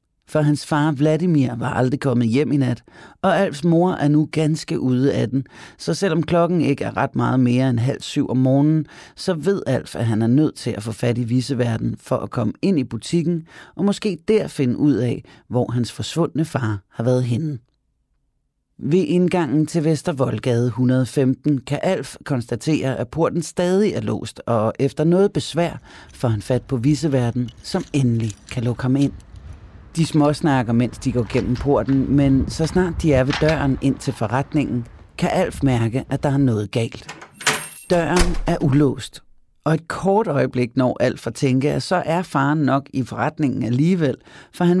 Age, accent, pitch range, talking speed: 30-49, native, 120-155 Hz, 185 wpm